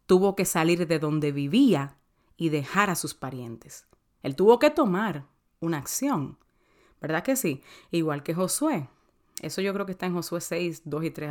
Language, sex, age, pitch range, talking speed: Spanish, female, 30-49, 150-205 Hz, 180 wpm